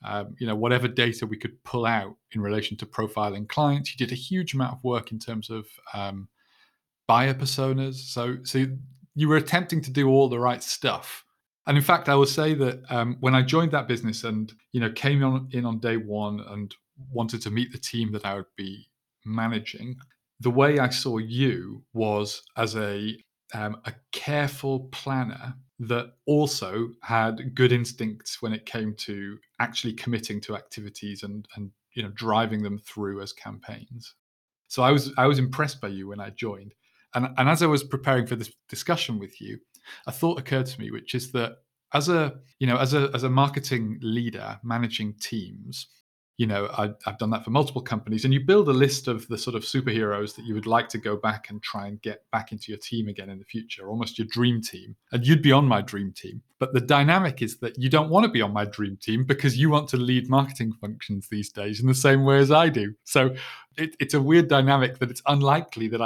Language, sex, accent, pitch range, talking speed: English, male, British, 110-135 Hz, 215 wpm